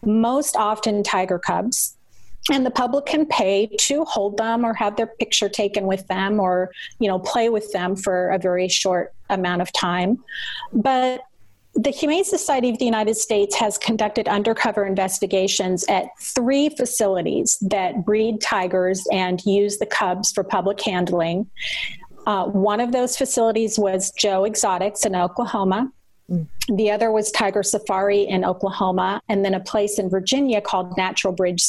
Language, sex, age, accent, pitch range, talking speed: English, female, 40-59, American, 190-230 Hz, 155 wpm